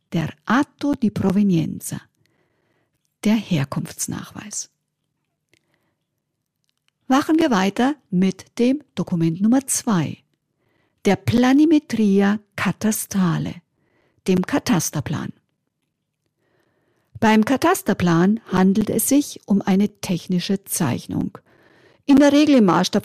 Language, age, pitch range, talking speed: German, 50-69, 175-230 Hz, 85 wpm